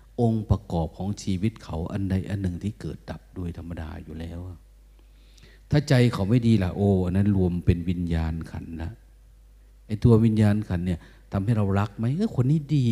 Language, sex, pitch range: Thai, male, 85-110 Hz